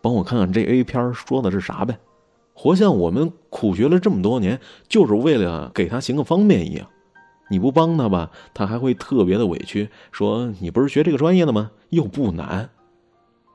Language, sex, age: Chinese, male, 30-49